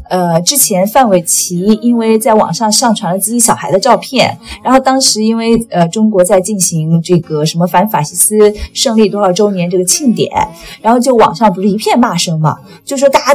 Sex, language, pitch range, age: female, Chinese, 175-225 Hz, 30-49